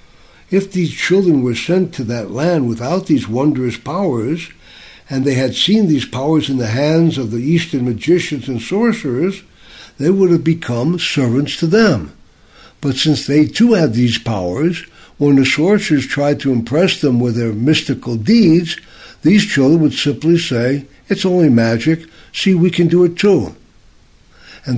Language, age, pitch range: English, 60-79, 125-170 Hz